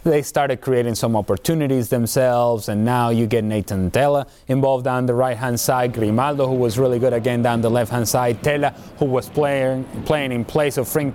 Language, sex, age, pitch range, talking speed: English, male, 30-49, 125-150 Hz, 195 wpm